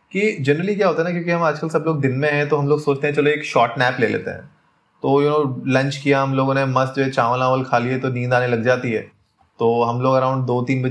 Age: 20-39